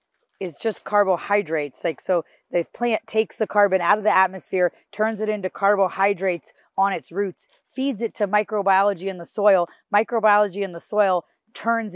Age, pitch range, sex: 30-49, 160-200 Hz, female